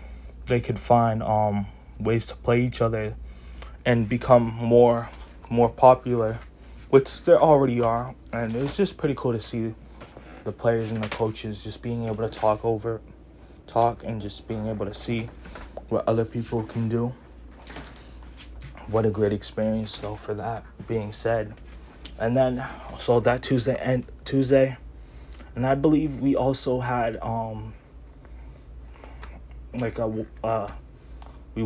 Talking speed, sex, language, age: 145 wpm, male, English, 20-39